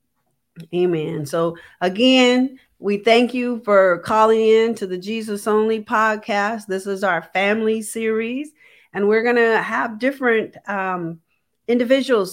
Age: 40-59